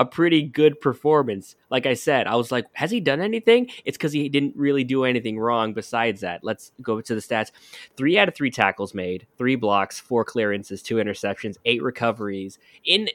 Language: English